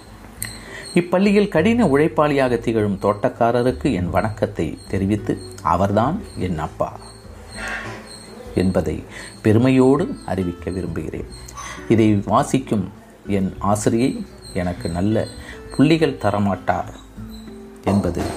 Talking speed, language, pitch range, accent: 80 wpm, Tamil, 95-125 Hz, native